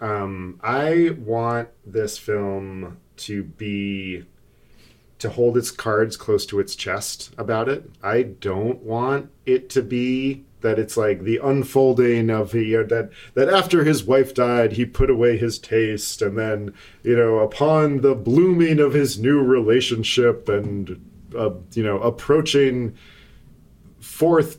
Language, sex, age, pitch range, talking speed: English, male, 40-59, 100-130 Hz, 145 wpm